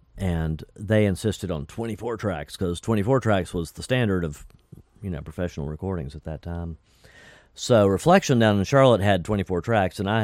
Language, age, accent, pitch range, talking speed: English, 50-69, American, 85-105 Hz, 175 wpm